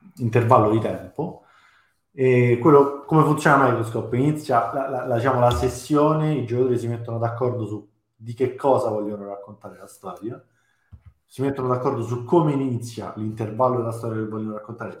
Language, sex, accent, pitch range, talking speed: Italian, male, native, 105-130 Hz, 150 wpm